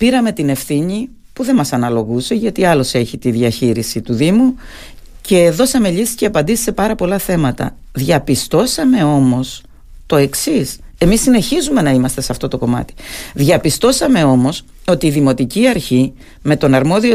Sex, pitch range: female, 145-230 Hz